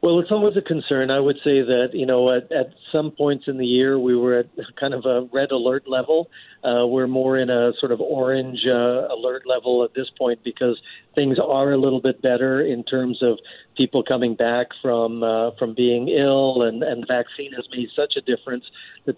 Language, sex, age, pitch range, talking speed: English, male, 50-69, 125-140 Hz, 215 wpm